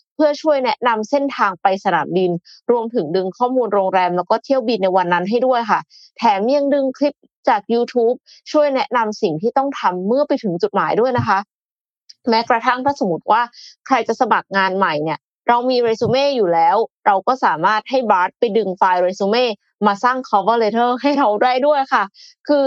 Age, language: 20-39, Thai